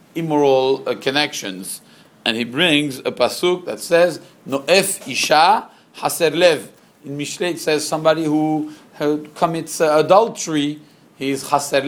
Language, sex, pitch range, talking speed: English, male, 135-175 Hz, 135 wpm